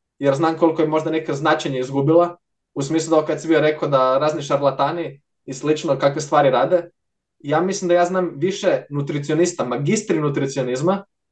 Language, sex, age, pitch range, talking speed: Croatian, male, 20-39, 140-165 Hz, 165 wpm